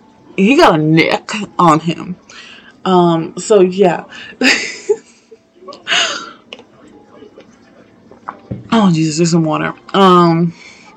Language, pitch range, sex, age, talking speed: English, 165-215 Hz, female, 20-39, 80 wpm